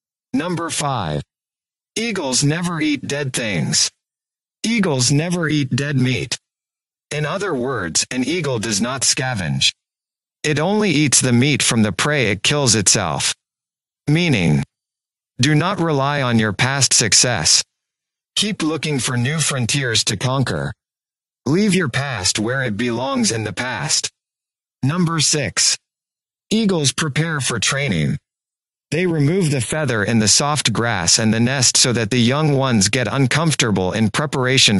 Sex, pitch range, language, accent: male, 115-150 Hz, English, American